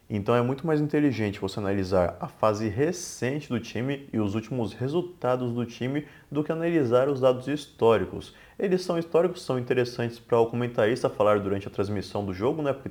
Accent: Brazilian